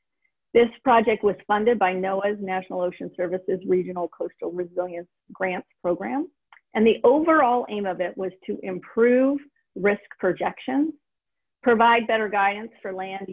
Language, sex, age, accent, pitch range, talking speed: English, female, 40-59, American, 185-250 Hz, 135 wpm